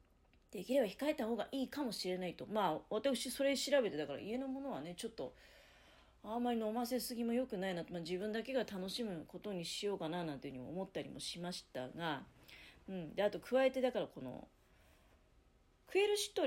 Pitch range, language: 165-255 Hz, Japanese